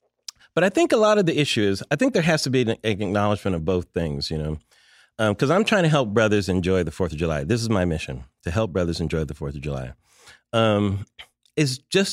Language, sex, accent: English, male, American